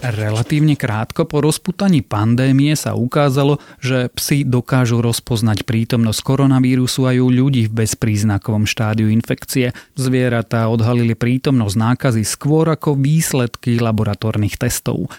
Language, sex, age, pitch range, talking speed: Slovak, male, 30-49, 115-135 Hz, 115 wpm